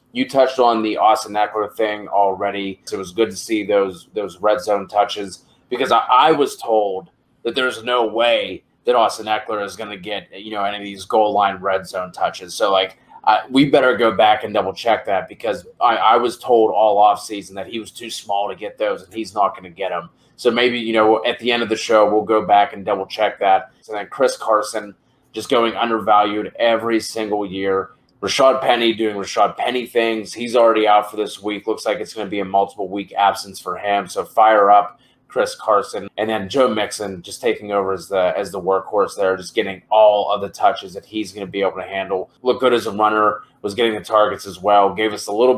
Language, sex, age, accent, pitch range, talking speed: English, male, 30-49, American, 100-115 Hz, 230 wpm